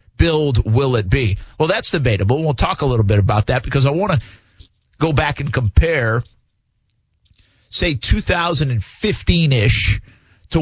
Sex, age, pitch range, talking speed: male, 50-69, 105-135 Hz, 145 wpm